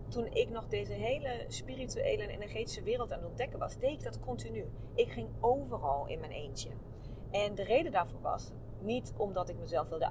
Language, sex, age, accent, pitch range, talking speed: Dutch, female, 30-49, Dutch, 175-275 Hz, 195 wpm